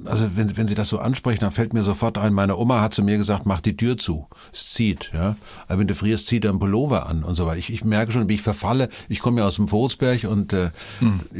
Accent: German